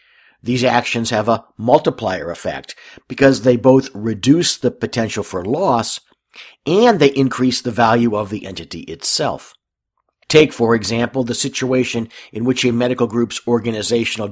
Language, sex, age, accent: English, male, 50-69, American